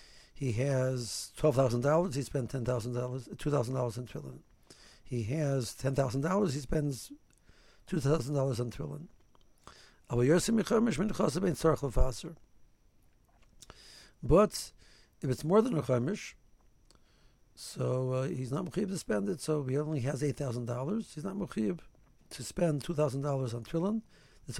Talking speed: 145 wpm